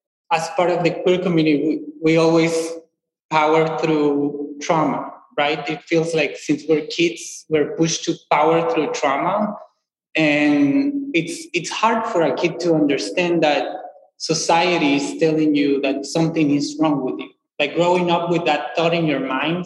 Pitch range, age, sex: 150-180 Hz, 20-39, male